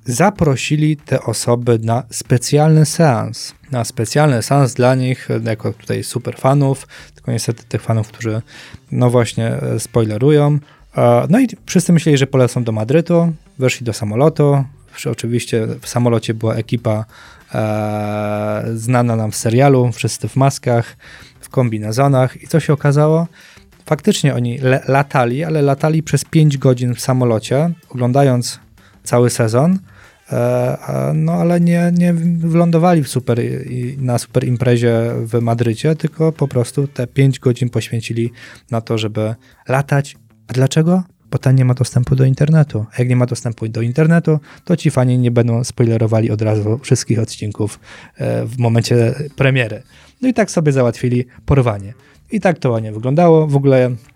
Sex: male